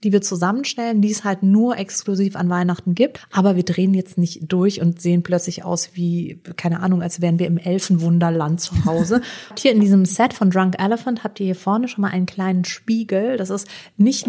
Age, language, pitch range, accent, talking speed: 30-49, German, 180-215 Hz, German, 215 wpm